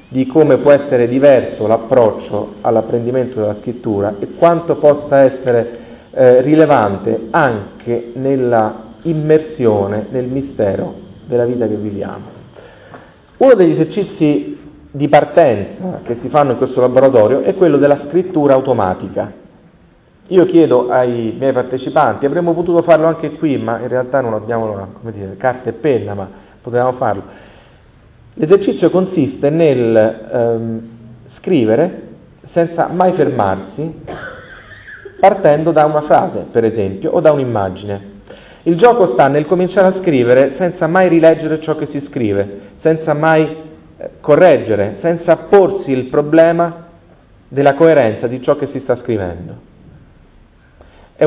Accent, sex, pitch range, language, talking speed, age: native, male, 115-155 Hz, Italian, 130 wpm, 40-59